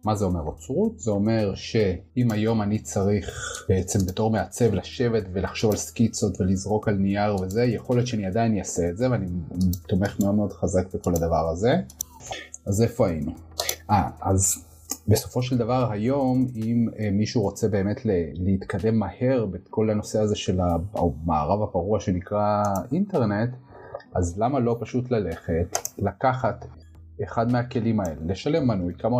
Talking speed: 145 wpm